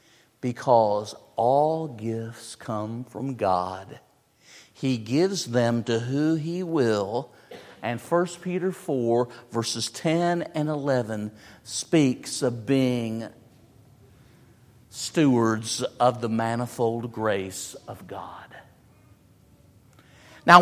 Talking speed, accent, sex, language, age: 95 wpm, American, male, English, 50-69